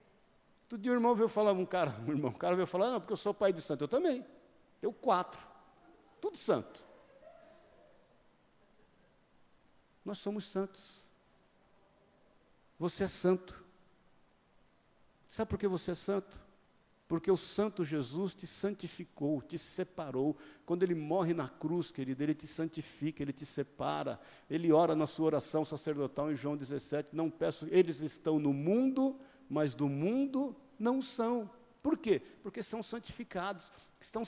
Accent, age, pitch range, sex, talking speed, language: Brazilian, 60-79, 160-215 Hz, male, 150 wpm, Portuguese